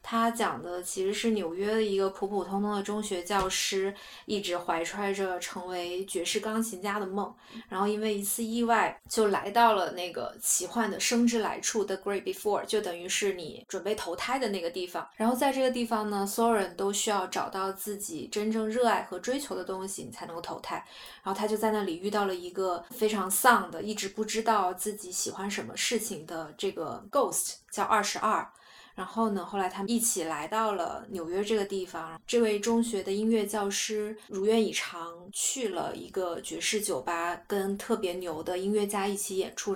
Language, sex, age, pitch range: Chinese, female, 20-39, 190-225 Hz